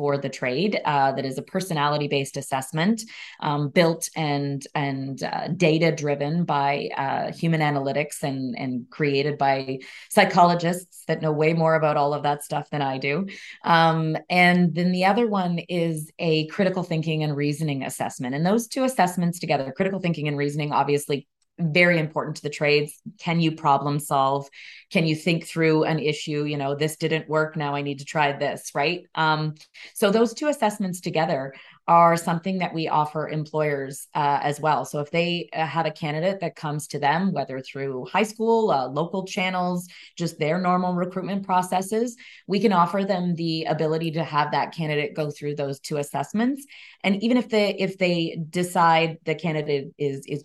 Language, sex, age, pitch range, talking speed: English, female, 20-39, 145-180 Hz, 180 wpm